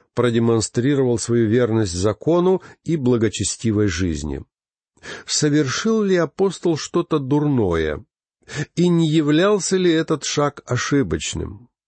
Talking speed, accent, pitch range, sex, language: 95 wpm, native, 105-150 Hz, male, Russian